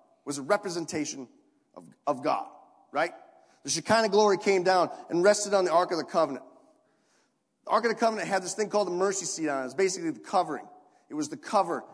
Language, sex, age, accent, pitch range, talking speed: English, male, 30-49, American, 195-250 Hz, 215 wpm